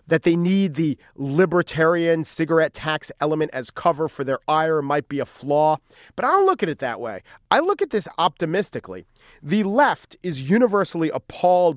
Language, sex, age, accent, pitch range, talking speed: English, male, 40-59, American, 140-180 Hz, 180 wpm